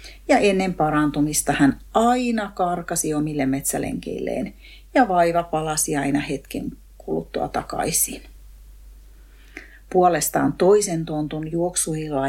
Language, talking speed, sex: Finnish, 95 wpm, female